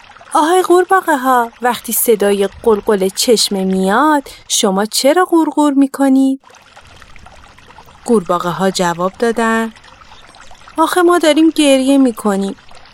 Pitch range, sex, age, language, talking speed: 195-275 Hz, female, 30-49, Persian, 95 wpm